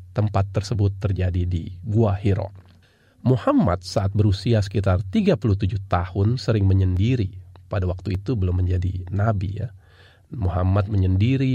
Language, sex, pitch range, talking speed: Indonesian, male, 95-115 Hz, 120 wpm